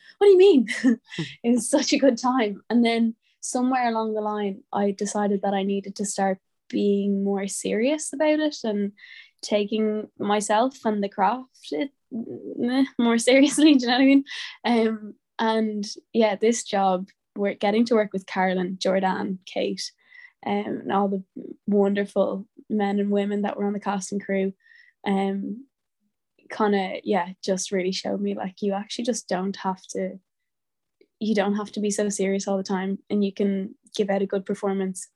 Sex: female